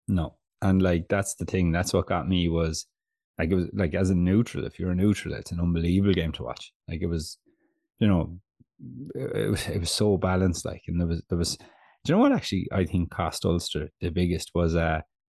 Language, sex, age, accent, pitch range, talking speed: English, male, 30-49, Irish, 85-100 Hz, 230 wpm